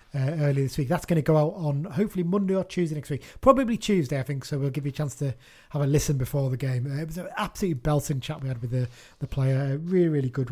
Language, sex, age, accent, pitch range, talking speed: English, male, 20-39, British, 130-160 Hz, 285 wpm